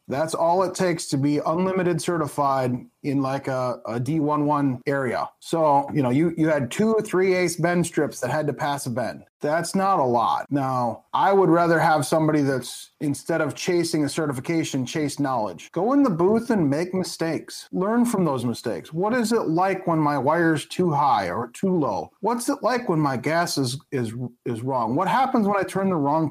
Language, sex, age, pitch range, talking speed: English, male, 30-49, 140-185 Hz, 205 wpm